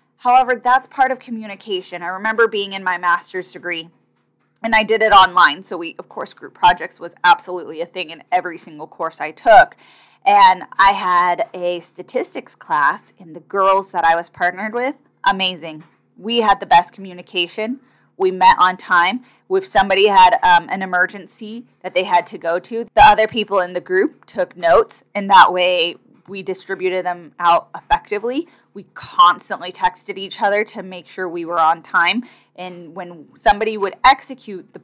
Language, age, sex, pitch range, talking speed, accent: English, 10-29, female, 180-225 Hz, 175 wpm, American